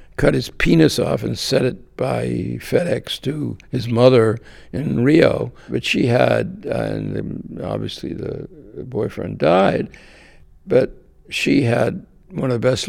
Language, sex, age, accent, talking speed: English, male, 60-79, American, 140 wpm